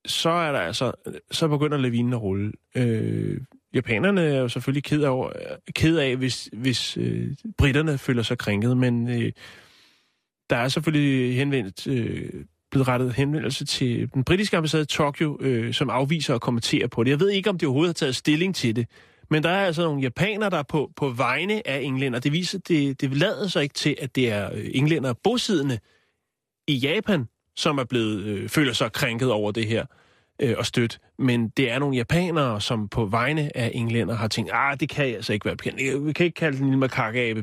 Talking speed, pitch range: 200 wpm, 115-150 Hz